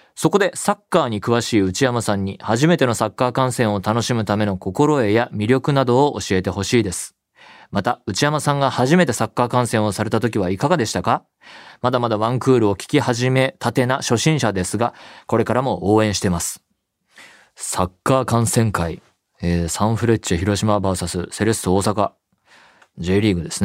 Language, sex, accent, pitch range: Japanese, male, native, 95-120 Hz